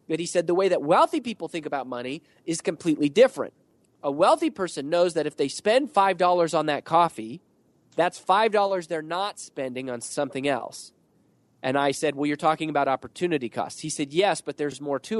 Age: 30-49